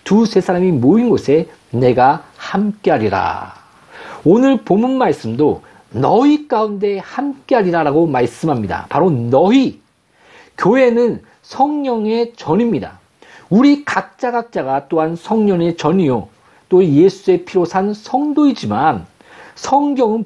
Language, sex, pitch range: Korean, male, 175-245 Hz